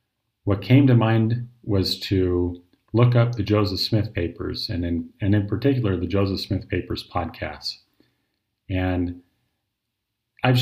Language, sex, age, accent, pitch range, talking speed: English, male, 40-59, American, 95-115 Hz, 135 wpm